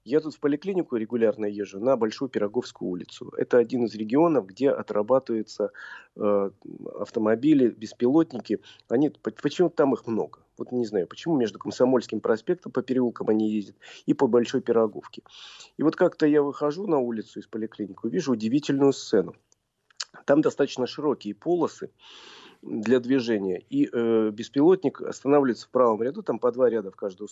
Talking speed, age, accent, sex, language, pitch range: 150 wpm, 40-59, native, male, Russian, 110-145 Hz